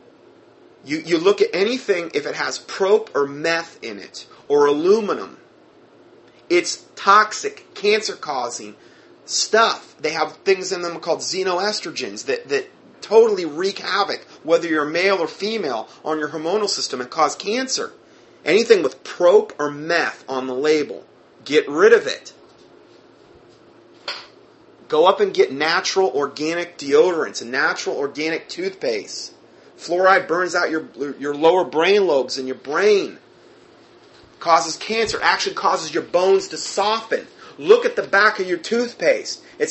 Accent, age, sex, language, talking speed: American, 30-49, male, English, 140 wpm